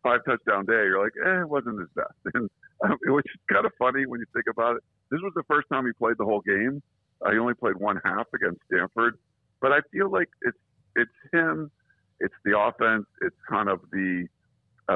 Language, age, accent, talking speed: English, 50-69, American, 215 wpm